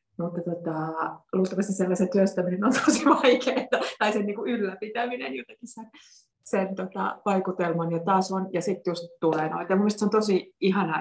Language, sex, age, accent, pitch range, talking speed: Finnish, female, 30-49, native, 165-210 Hz, 155 wpm